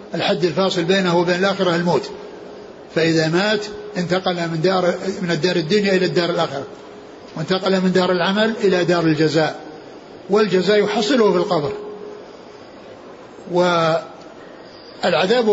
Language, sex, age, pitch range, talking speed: Arabic, male, 60-79, 180-215 Hz, 110 wpm